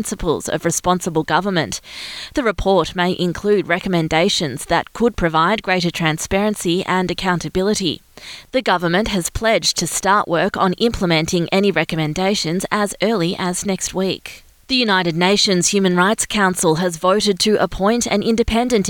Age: 20-39